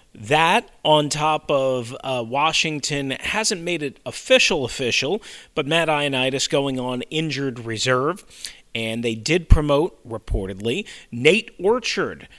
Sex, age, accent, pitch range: male, 40-59, American, 120-160 Hz